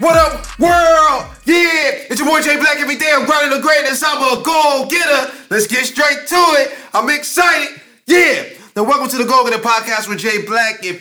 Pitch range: 190-235 Hz